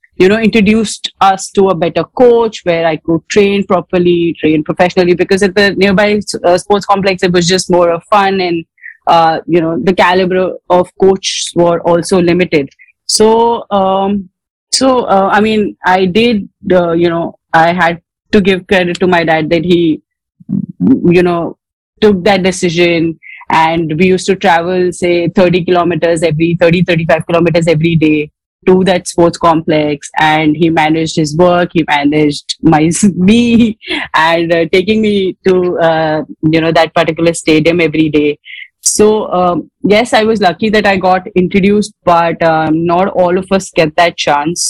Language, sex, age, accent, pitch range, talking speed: English, female, 30-49, Indian, 165-195 Hz, 165 wpm